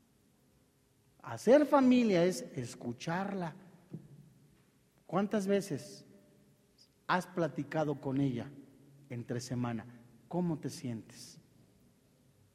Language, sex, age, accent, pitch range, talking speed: Spanish, male, 40-59, Mexican, 140-235 Hz, 70 wpm